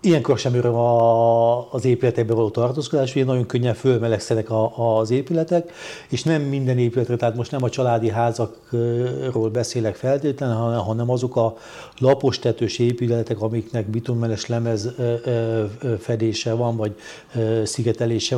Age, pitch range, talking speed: 60-79, 115-130 Hz, 135 wpm